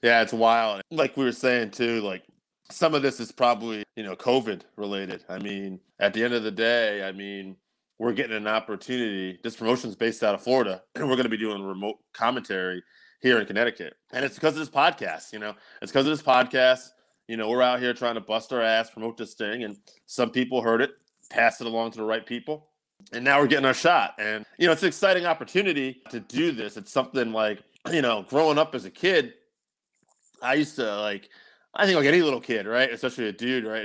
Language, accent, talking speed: English, American, 225 wpm